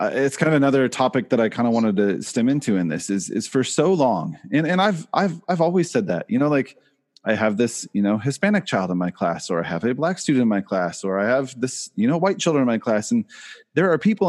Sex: male